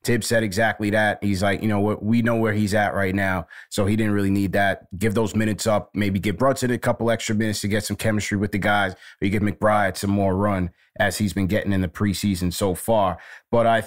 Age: 30-49